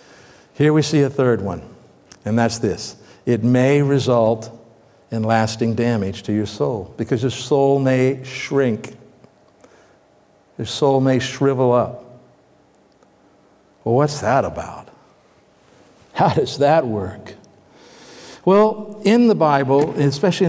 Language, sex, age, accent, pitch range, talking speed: English, male, 60-79, American, 125-170 Hz, 120 wpm